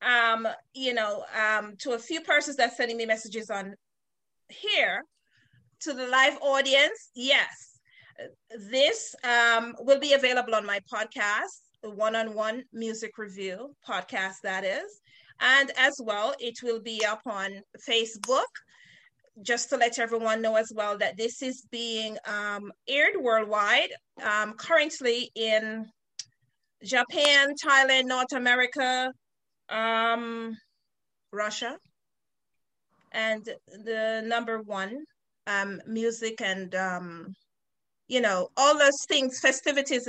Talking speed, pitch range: 120 wpm, 215-265 Hz